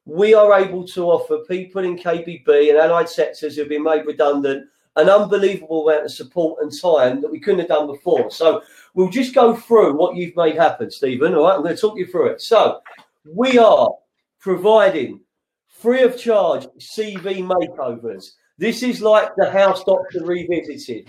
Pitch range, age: 170-205 Hz, 40-59